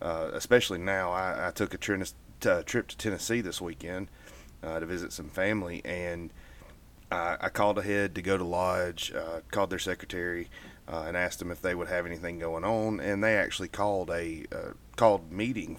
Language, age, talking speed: English, 30-49, 195 wpm